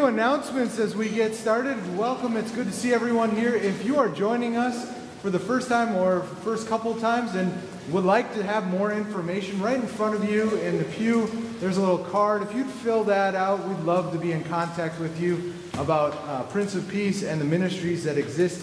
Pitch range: 170-220 Hz